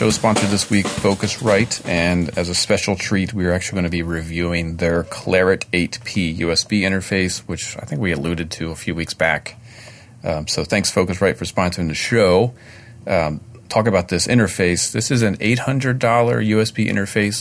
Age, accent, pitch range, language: 40-59, American, 85-115 Hz, English